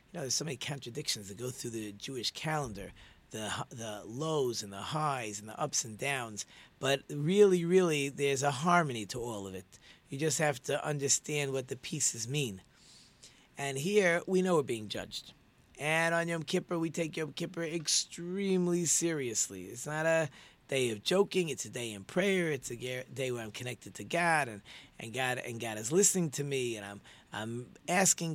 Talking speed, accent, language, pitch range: 195 wpm, American, English, 120-170 Hz